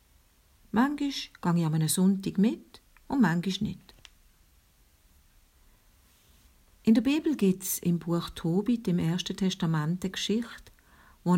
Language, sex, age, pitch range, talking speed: German, female, 50-69, 130-200 Hz, 115 wpm